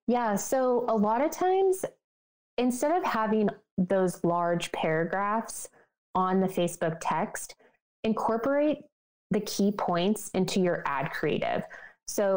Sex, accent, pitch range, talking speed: female, American, 165-200 Hz, 120 wpm